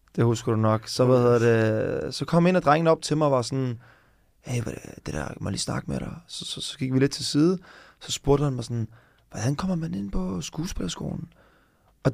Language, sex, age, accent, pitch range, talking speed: Danish, male, 20-39, native, 125-155 Hz, 225 wpm